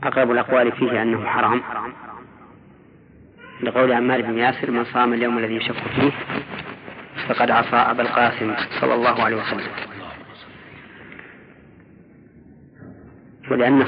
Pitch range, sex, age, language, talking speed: 115-125 Hz, female, 40-59, Arabic, 105 wpm